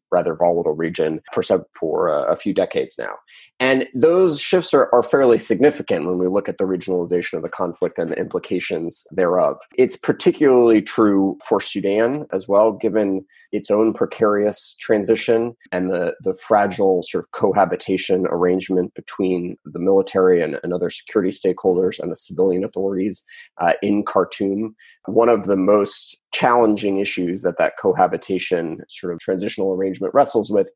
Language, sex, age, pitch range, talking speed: English, male, 20-39, 95-115 Hz, 155 wpm